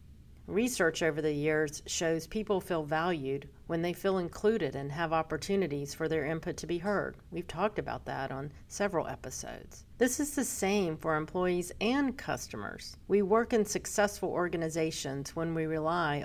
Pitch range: 155-195 Hz